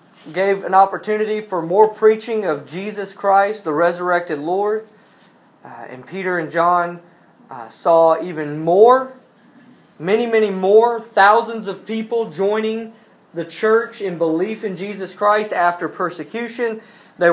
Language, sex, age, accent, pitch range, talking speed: English, male, 30-49, American, 170-220 Hz, 130 wpm